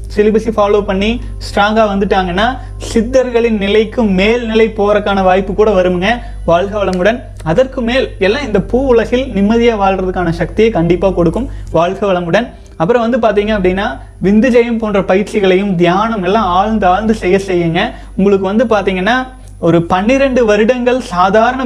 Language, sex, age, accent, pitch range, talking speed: Tamil, male, 30-49, native, 180-230 Hz, 125 wpm